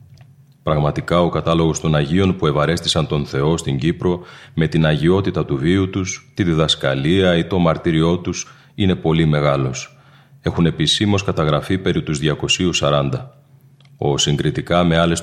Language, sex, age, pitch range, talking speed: Greek, male, 40-59, 80-95 Hz, 140 wpm